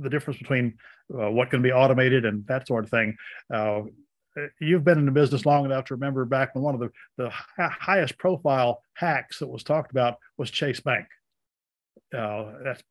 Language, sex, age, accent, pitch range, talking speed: English, male, 50-69, American, 115-145 Hz, 190 wpm